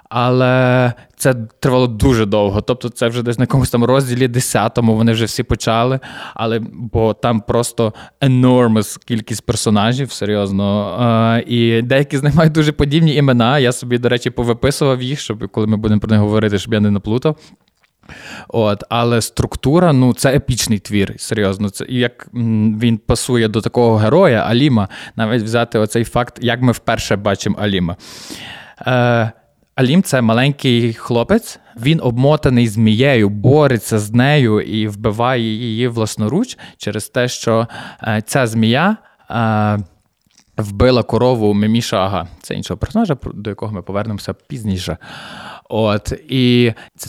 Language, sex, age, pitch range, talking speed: Ukrainian, male, 20-39, 110-125 Hz, 150 wpm